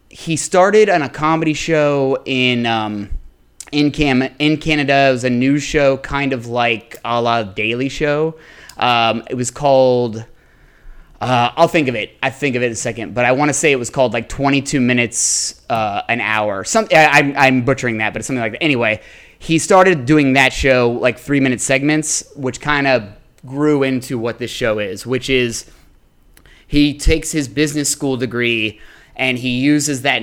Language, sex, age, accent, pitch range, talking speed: English, male, 20-39, American, 115-145 Hz, 190 wpm